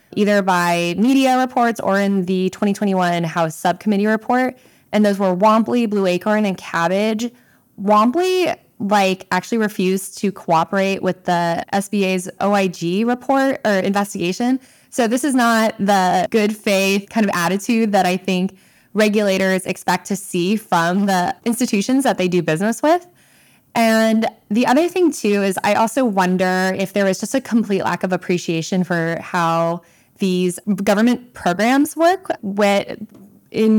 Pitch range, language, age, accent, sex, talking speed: 180-225 Hz, English, 20-39, American, female, 145 wpm